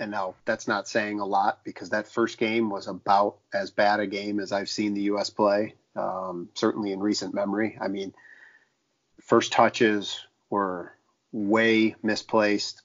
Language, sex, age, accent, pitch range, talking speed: English, male, 40-59, American, 100-115 Hz, 165 wpm